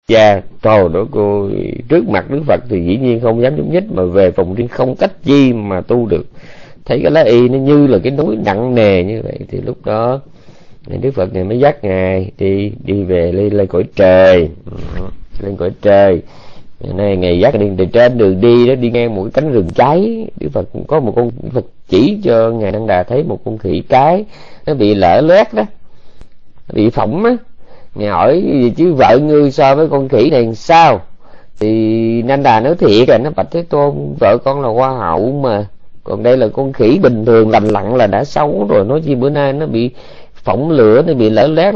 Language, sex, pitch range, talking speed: Vietnamese, male, 100-135 Hz, 225 wpm